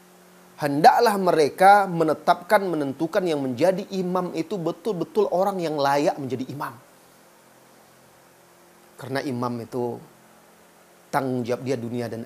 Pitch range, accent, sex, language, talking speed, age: 135-205 Hz, native, male, Indonesian, 110 wpm, 30-49